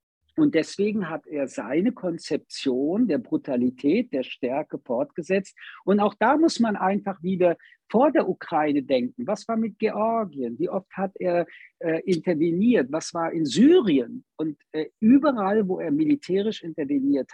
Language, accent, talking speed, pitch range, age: German, German, 150 wpm, 160-255 Hz, 50-69